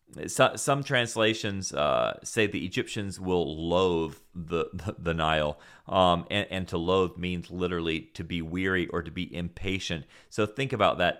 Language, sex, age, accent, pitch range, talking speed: English, male, 30-49, American, 85-95 Hz, 160 wpm